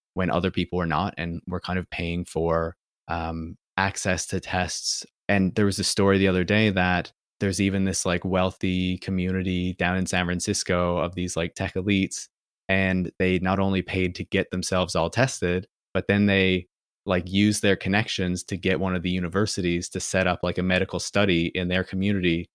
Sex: male